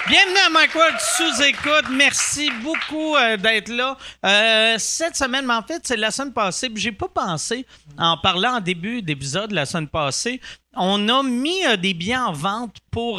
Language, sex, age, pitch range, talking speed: French, male, 40-59, 160-235 Hz, 185 wpm